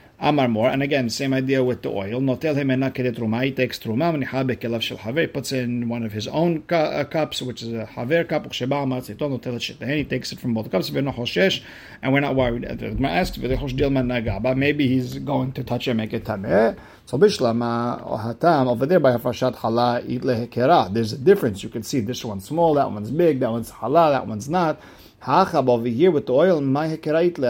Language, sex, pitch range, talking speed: English, male, 120-150 Hz, 165 wpm